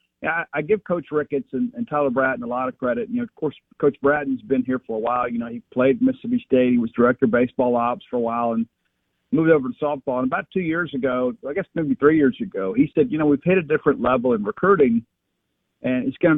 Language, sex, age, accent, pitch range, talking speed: English, male, 50-69, American, 130-205 Hz, 245 wpm